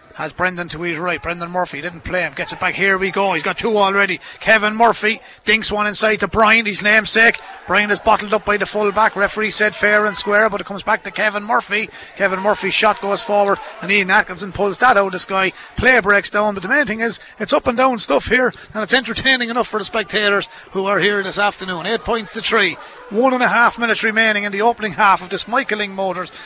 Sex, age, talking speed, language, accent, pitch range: male, 30-49, 240 wpm, English, Irish, 190-220 Hz